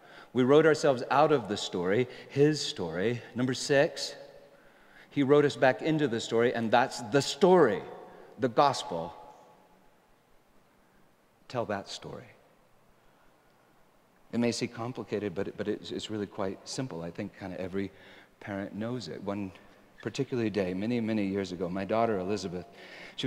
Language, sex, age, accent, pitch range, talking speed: English, male, 40-59, American, 100-140 Hz, 140 wpm